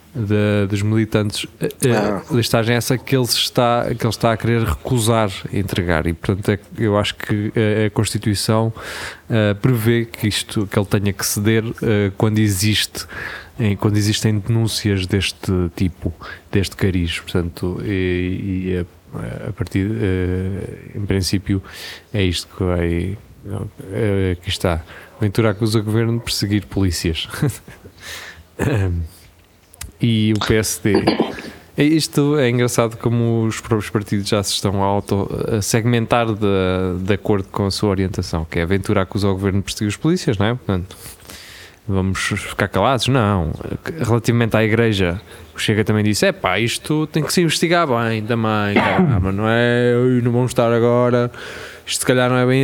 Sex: male